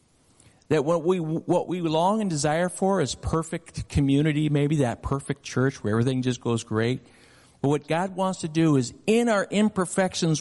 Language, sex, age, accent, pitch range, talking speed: English, male, 50-69, American, 125-175 Hz, 180 wpm